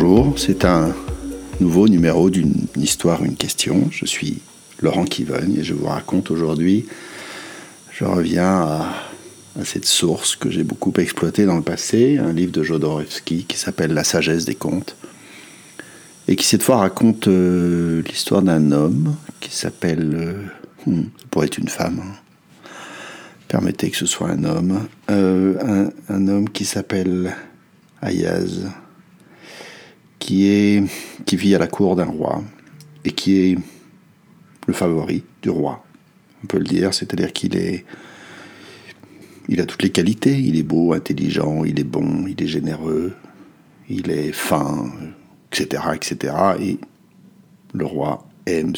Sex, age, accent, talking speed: male, 60-79, French, 145 wpm